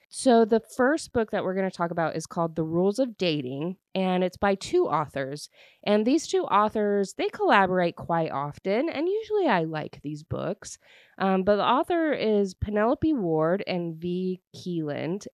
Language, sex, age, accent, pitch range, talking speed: English, female, 20-39, American, 155-215 Hz, 175 wpm